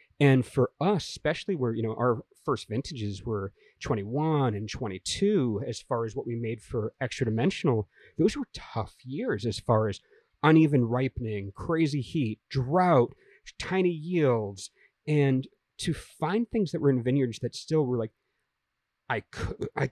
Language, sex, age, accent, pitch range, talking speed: English, male, 30-49, American, 115-155 Hz, 150 wpm